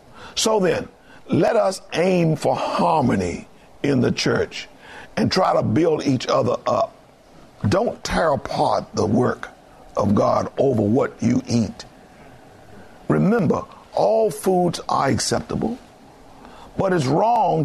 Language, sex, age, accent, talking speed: English, male, 50-69, American, 120 wpm